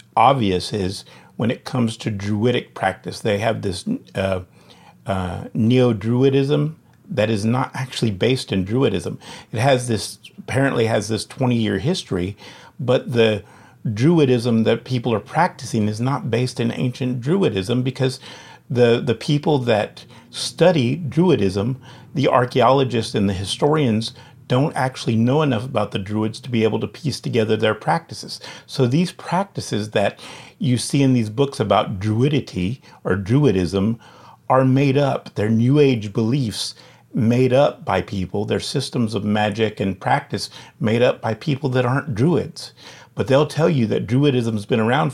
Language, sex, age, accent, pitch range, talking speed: English, male, 50-69, American, 110-135 Hz, 155 wpm